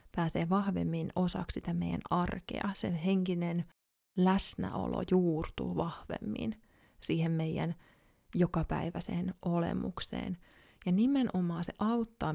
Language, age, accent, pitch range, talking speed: Finnish, 30-49, native, 165-195 Hz, 90 wpm